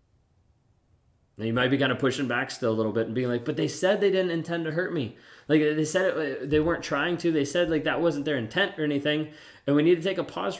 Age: 20-39